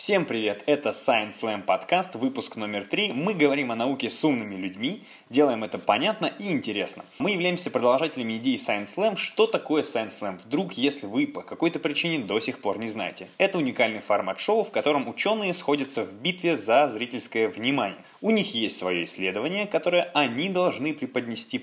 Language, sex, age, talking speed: Russian, male, 20-39, 180 wpm